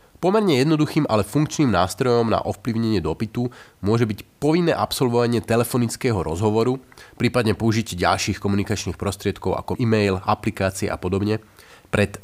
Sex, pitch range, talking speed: male, 95-120 Hz, 125 wpm